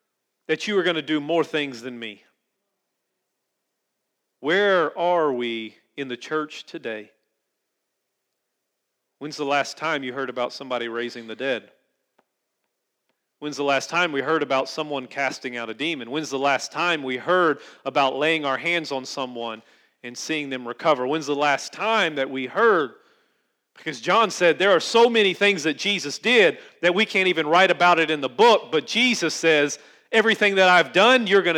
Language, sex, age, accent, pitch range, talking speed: English, male, 40-59, American, 135-185 Hz, 175 wpm